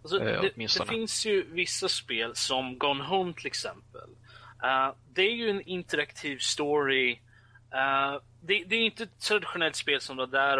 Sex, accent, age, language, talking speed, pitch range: male, native, 20-39, Swedish, 170 wpm, 120-160 Hz